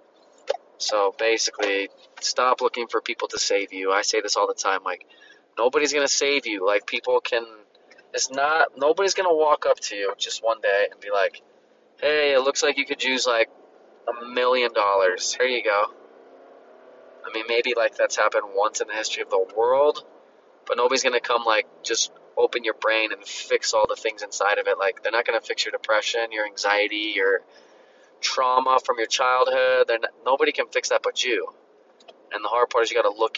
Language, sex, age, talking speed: English, male, 20-39, 205 wpm